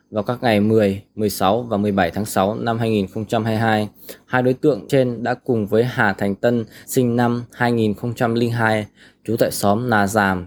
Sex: male